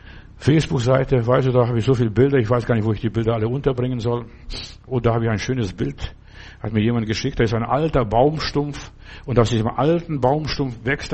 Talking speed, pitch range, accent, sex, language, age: 225 wpm, 115-165 Hz, German, male, German, 60-79